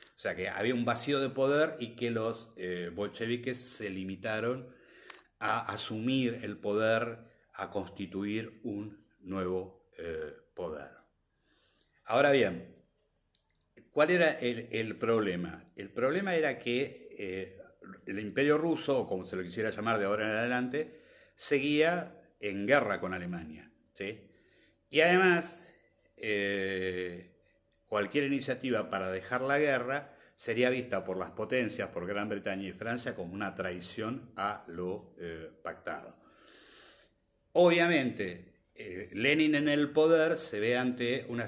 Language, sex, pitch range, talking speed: Spanish, male, 95-135 Hz, 130 wpm